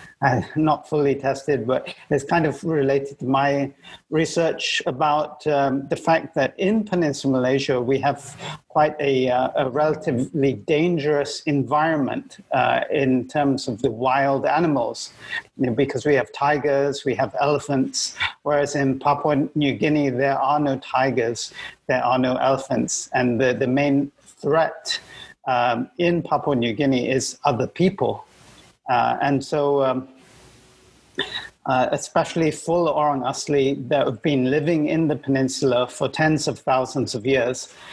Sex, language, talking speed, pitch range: male, English, 140 wpm, 130-150 Hz